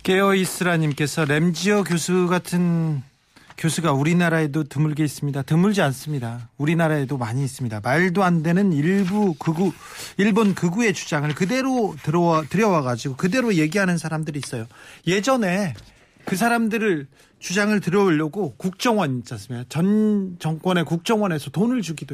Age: 40-59